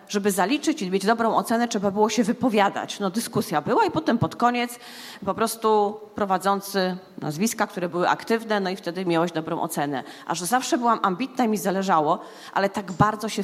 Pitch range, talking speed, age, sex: 195-260 Hz, 190 wpm, 30-49, female